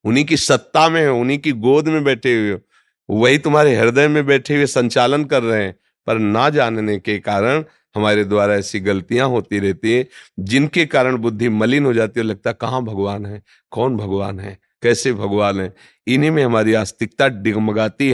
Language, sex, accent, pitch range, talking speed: Hindi, male, native, 105-140 Hz, 185 wpm